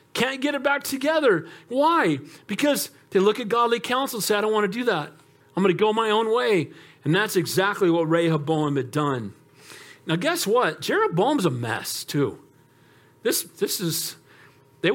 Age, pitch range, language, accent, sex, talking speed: 50-69, 170-255 Hz, English, American, male, 180 wpm